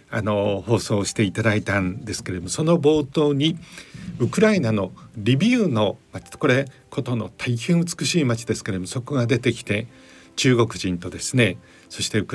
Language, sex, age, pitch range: Japanese, male, 50-69, 105-140 Hz